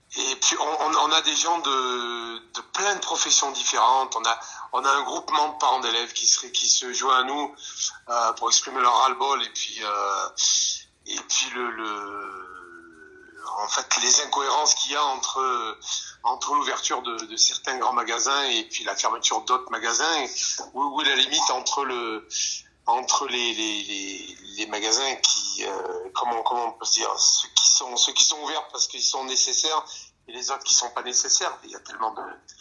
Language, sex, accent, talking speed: French, male, French, 195 wpm